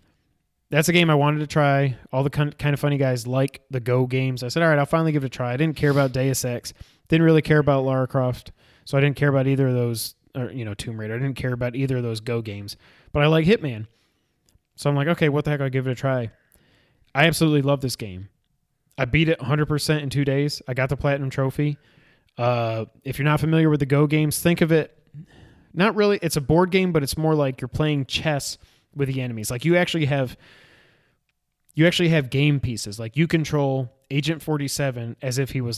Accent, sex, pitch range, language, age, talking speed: American, male, 120-150 Hz, English, 20-39, 235 wpm